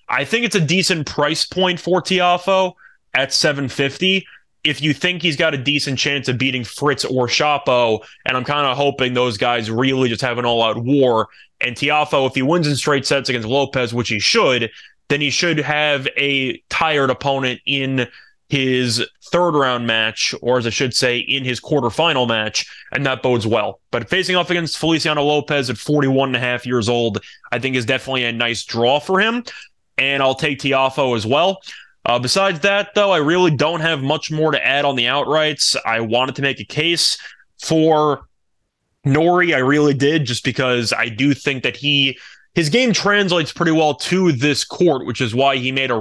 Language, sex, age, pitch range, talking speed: English, male, 20-39, 125-155 Hz, 195 wpm